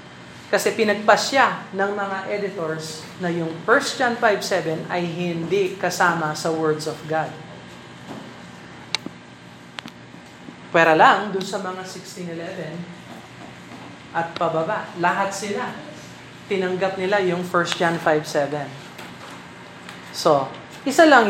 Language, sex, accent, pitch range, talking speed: Filipino, male, native, 170-205 Hz, 105 wpm